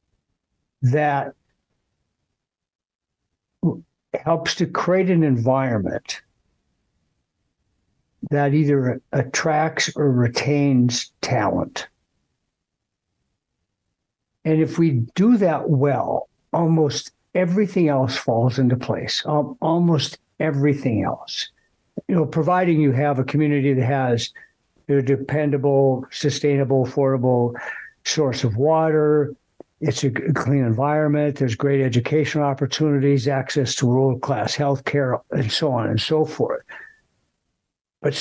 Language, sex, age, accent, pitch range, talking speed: English, male, 60-79, American, 130-155 Hz, 100 wpm